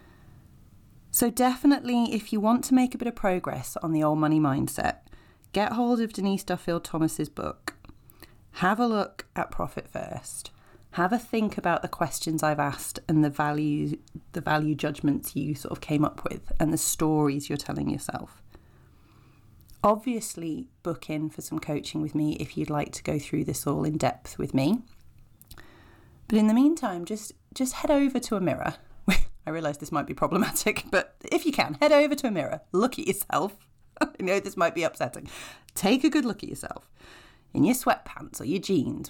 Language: English